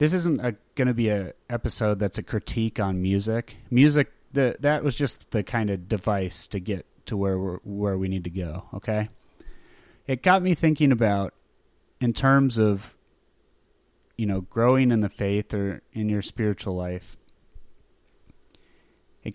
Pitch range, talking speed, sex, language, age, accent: 100-125 Hz, 160 wpm, male, English, 30-49, American